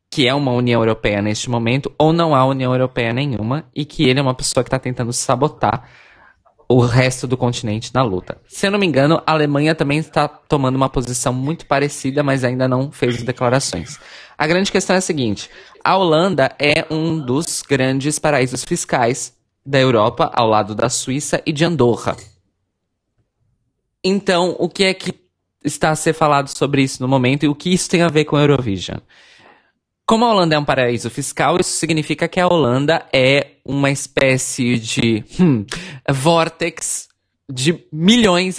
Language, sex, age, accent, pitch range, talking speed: Portuguese, male, 20-39, Brazilian, 120-160 Hz, 175 wpm